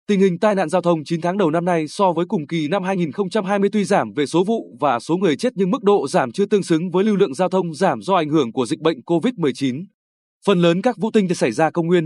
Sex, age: male, 20-39